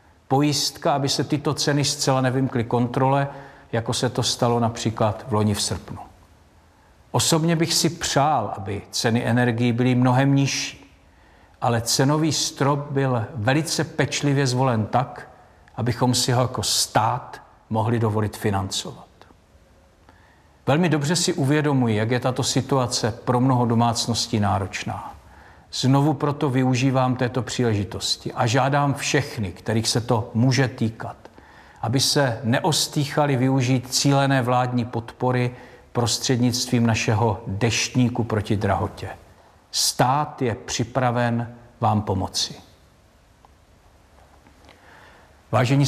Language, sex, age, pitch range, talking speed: Czech, male, 50-69, 105-135 Hz, 110 wpm